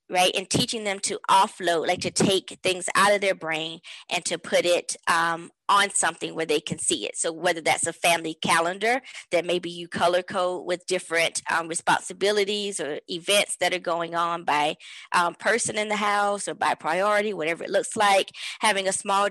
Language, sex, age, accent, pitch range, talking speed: English, female, 20-39, American, 180-215 Hz, 195 wpm